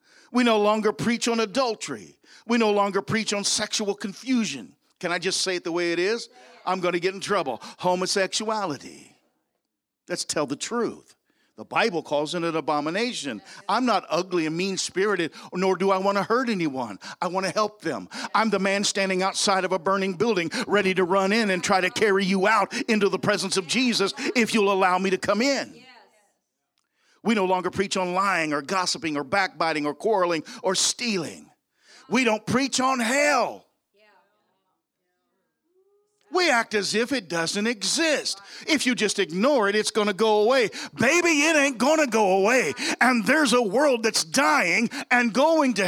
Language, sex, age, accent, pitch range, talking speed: English, male, 50-69, American, 195-285 Hz, 180 wpm